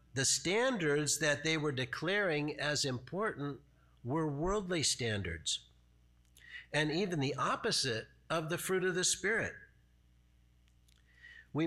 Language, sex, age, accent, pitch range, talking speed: English, male, 50-69, American, 110-145 Hz, 115 wpm